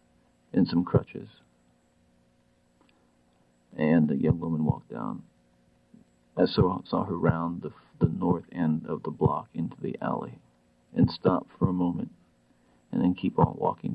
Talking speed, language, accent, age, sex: 145 wpm, English, American, 50-69, male